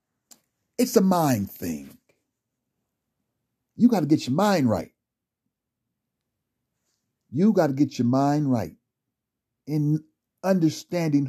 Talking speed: 105 wpm